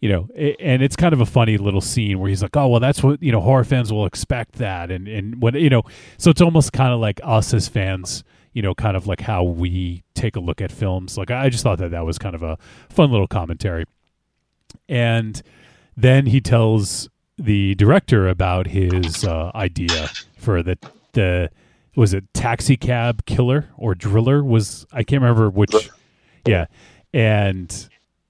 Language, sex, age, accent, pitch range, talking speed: English, male, 30-49, American, 100-130 Hz, 190 wpm